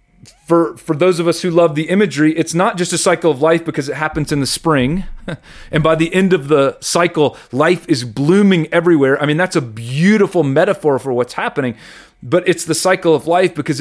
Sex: male